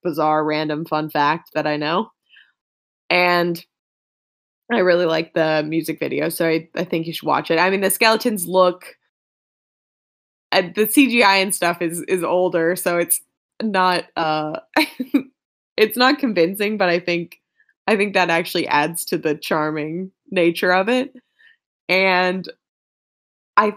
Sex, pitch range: female, 160-190 Hz